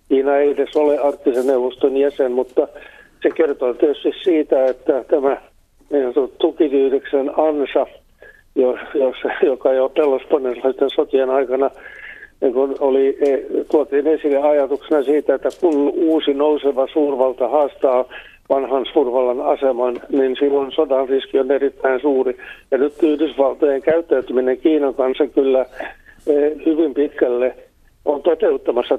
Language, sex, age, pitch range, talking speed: Finnish, male, 60-79, 130-155 Hz, 115 wpm